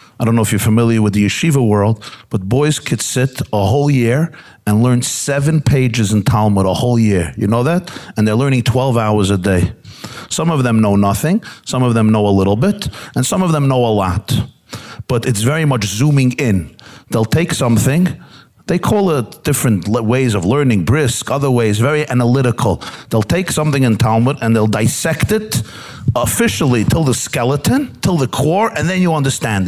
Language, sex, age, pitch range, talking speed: English, male, 50-69, 110-145 Hz, 195 wpm